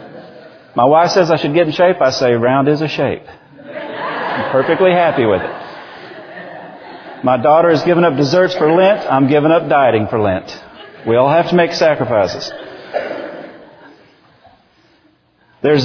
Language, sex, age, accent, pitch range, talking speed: English, male, 40-59, American, 115-155 Hz, 150 wpm